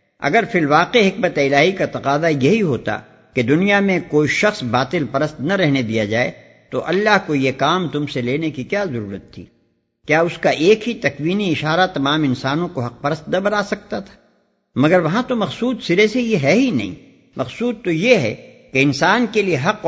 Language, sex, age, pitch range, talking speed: Urdu, male, 60-79, 130-205 Hz, 200 wpm